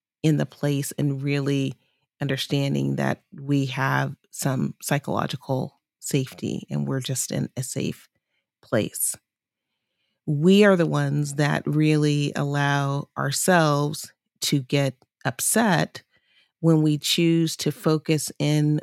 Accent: American